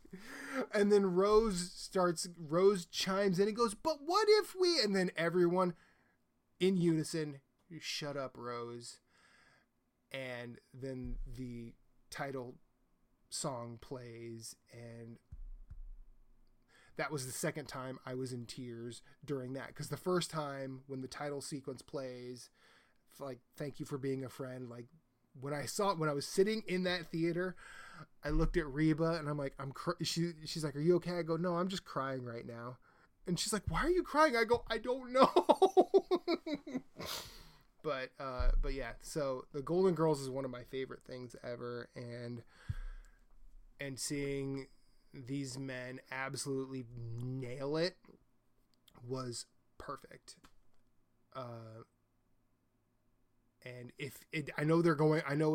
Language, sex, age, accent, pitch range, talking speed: English, male, 20-39, American, 125-175 Hz, 145 wpm